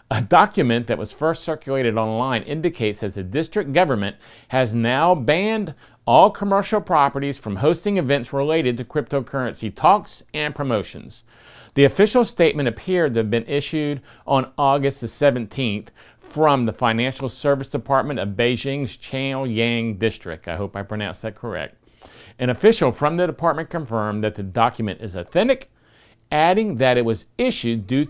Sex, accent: male, American